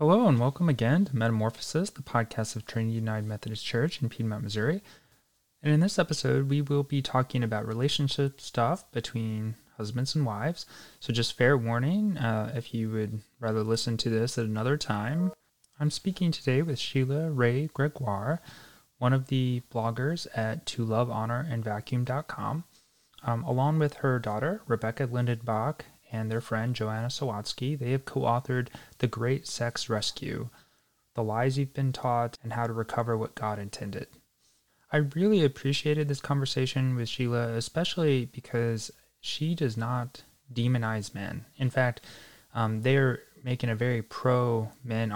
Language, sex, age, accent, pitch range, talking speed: English, male, 20-39, American, 115-140 Hz, 145 wpm